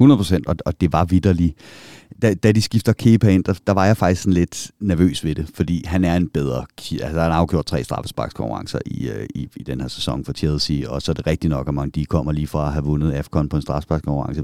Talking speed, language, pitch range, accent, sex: 240 wpm, Danish, 80-115 Hz, native, male